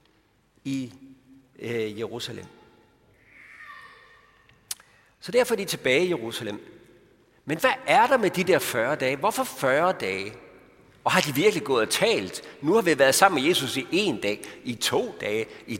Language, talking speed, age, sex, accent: Danish, 165 wpm, 60-79, male, native